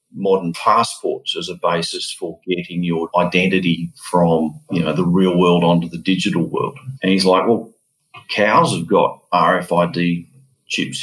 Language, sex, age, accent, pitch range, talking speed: English, male, 50-69, Australian, 85-110 Hz, 150 wpm